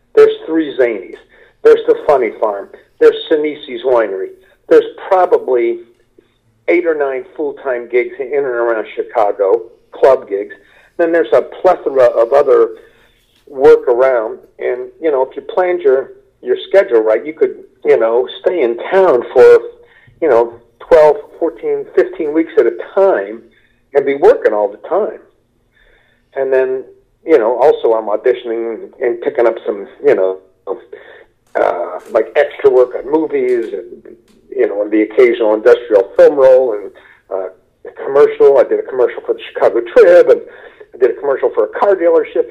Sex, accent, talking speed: male, American, 160 wpm